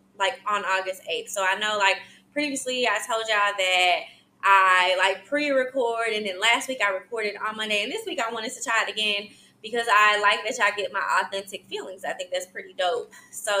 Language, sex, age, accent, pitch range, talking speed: English, female, 20-39, American, 195-245 Hz, 210 wpm